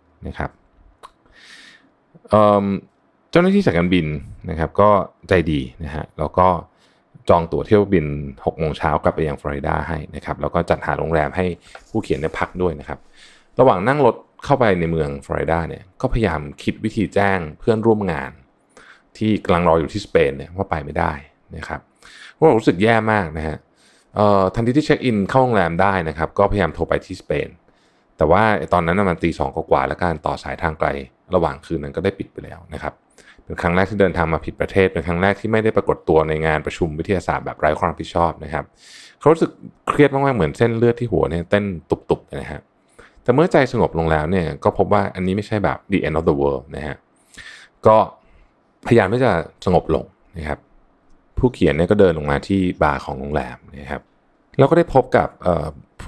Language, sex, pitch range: Thai, male, 75-100 Hz